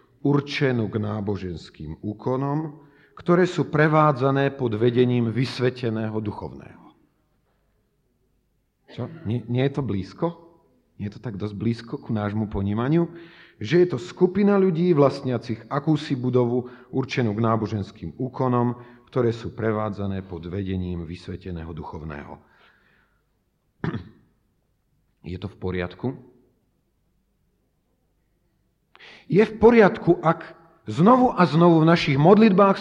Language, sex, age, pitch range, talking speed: Slovak, male, 40-59, 110-170 Hz, 105 wpm